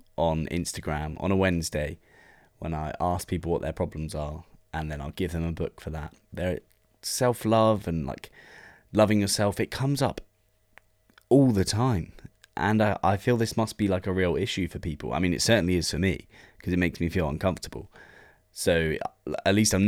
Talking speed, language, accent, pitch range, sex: 195 wpm, English, British, 80-100 Hz, male